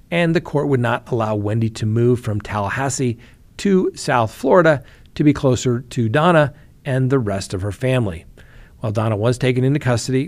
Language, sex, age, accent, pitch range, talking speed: English, male, 50-69, American, 115-140 Hz, 180 wpm